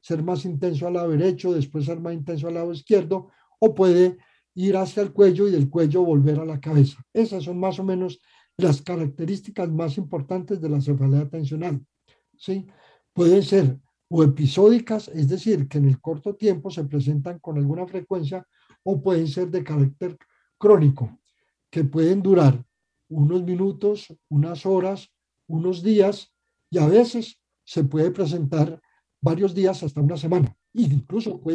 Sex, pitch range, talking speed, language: male, 150-195 Hz, 160 wpm, Spanish